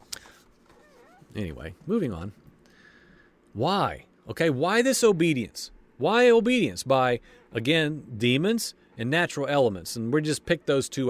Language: English